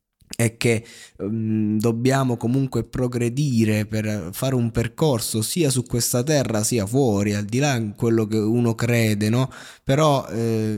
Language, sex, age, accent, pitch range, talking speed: Italian, male, 20-39, native, 110-130 Hz, 150 wpm